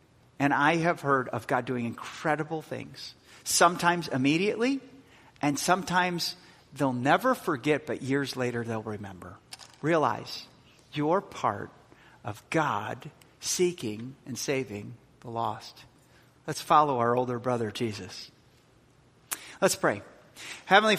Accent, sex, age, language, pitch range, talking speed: American, male, 40-59, English, 135-190 Hz, 115 wpm